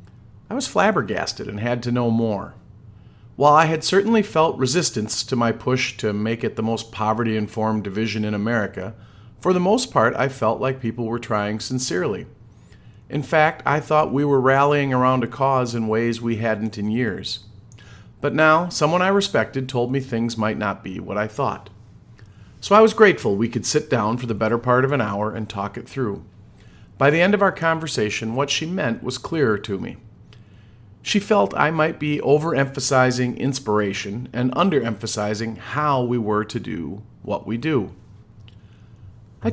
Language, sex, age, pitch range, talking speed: English, male, 40-59, 110-140 Hz, 180 wpm